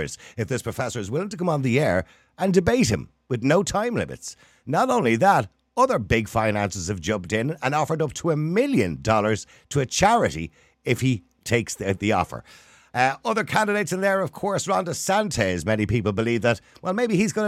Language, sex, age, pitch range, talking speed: English, male, 50-69, 115-195 Hz, 205 wpm